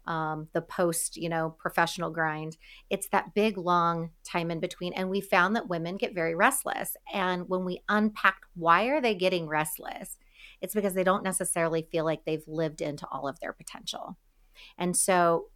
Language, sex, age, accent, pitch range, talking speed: English, female, 40-59, American, 160-190 Hz, 175 wpm